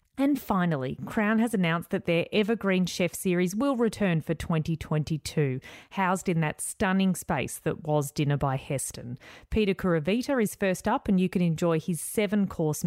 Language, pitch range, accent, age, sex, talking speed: English, 160-210 Hz, Australian, 30-49, female, 165 wpm